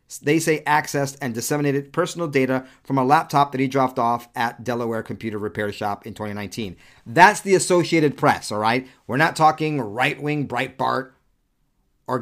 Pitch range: 120-145 Hz